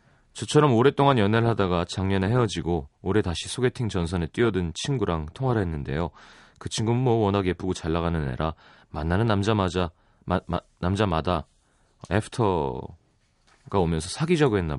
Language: Korean